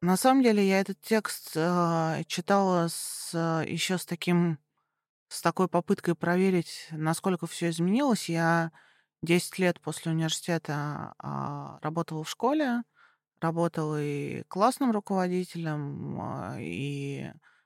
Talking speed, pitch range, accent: 105 wpm, 160-195 Hz, native